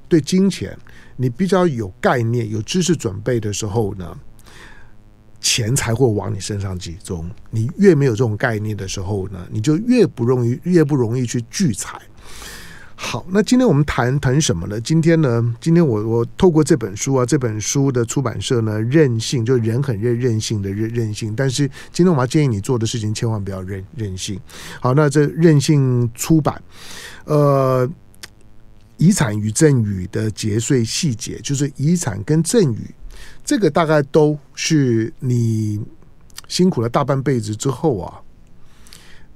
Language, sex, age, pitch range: Chinese, male, 50-69, 110-150 Hz